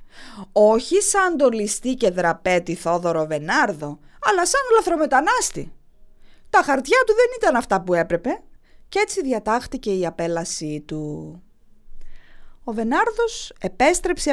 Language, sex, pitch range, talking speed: English, female, 180-280 Hz, 115 wpm